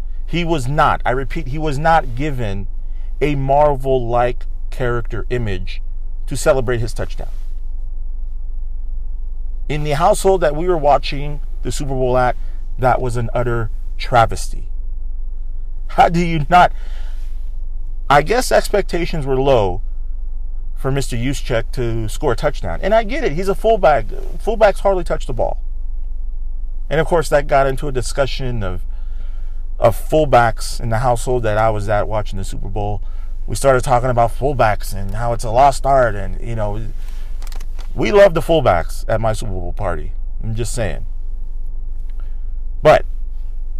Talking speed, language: 150 wpm, English